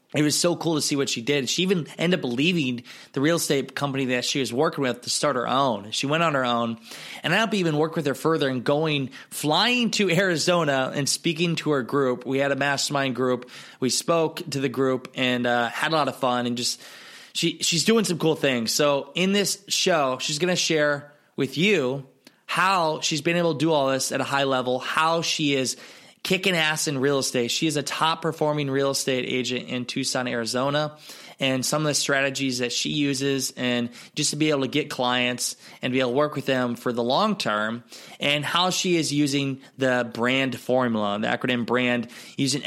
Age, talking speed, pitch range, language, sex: 20-39, 220 wpm, 125-155 Hz, English, male